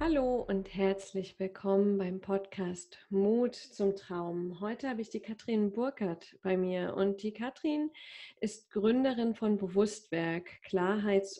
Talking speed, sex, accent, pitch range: 130 wpm, female, German, 195-245 Hz